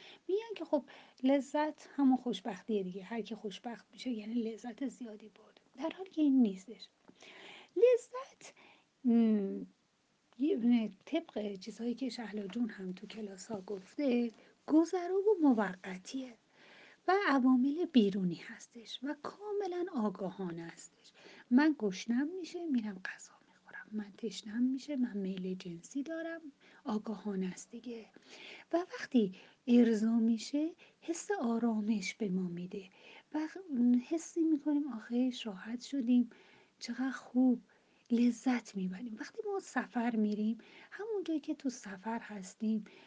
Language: Persian